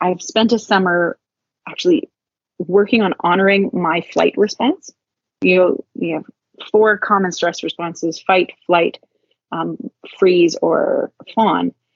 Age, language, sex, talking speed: 30-49, English, female, 125 wpm